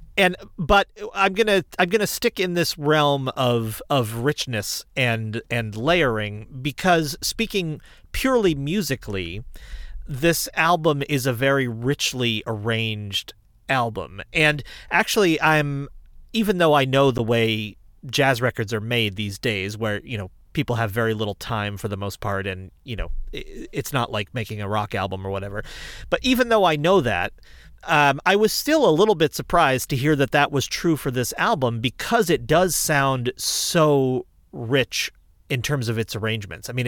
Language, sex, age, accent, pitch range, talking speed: English, male, 40-59, American, 110-155 Hz, 170 wpm